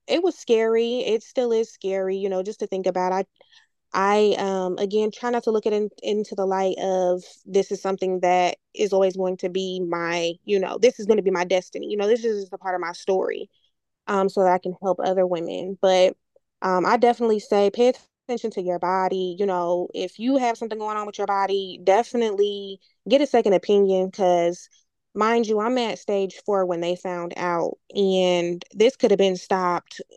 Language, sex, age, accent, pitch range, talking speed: English, female, 20-39, American, 180-210 Hz, 215 wpm